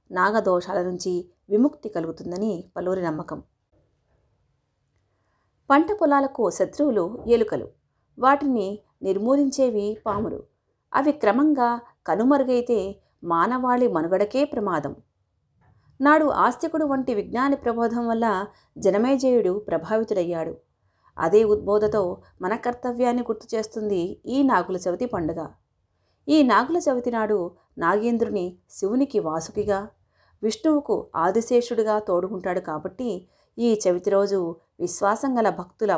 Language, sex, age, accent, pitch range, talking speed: Telugu, female, 30-49, native, 180-240 Hz, 90 wpm